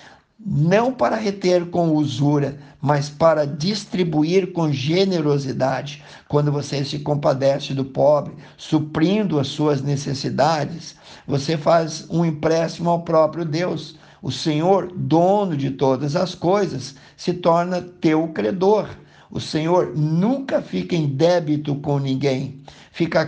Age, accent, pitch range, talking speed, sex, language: 60-79, Brazilian, 145-170 Hz, 120 wpm, male, Portuguese